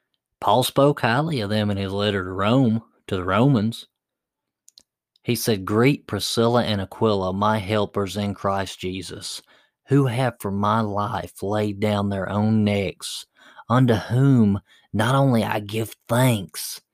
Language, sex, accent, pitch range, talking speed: English, male, American, 95-110 Hz, 145 wpm